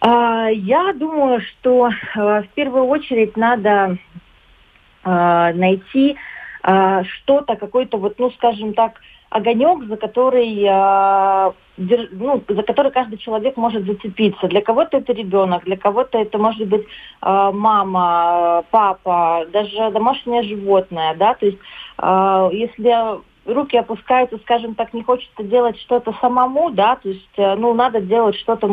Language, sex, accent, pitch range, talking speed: Russian, female, native, 185-230 Hz, 115 wpm